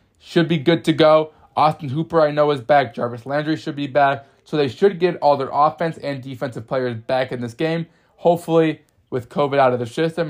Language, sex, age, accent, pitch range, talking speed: English, male, 20-39, American, 120-155 Hz, 215 wpm